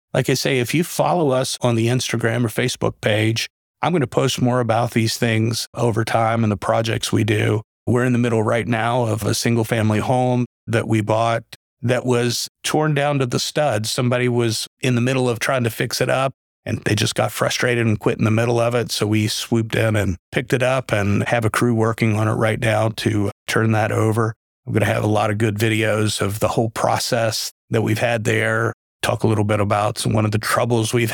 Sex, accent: male, American